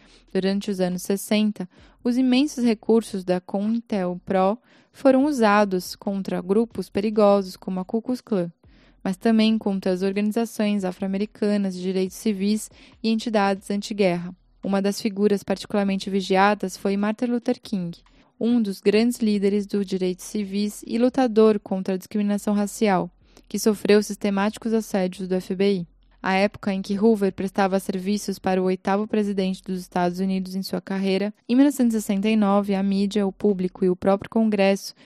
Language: Portuguese